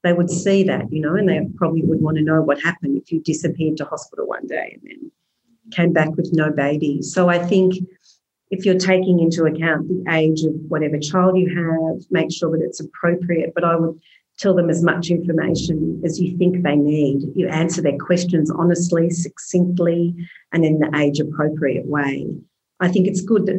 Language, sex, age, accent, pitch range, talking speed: English, female, 40-59, Australian, 155-180 Hz, 200 wpm